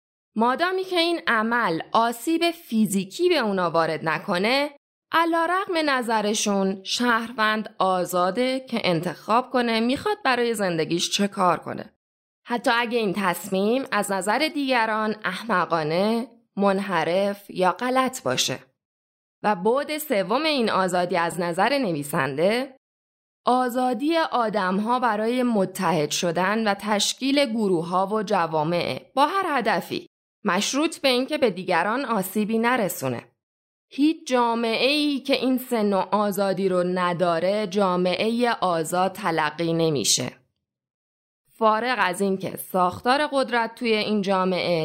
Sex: female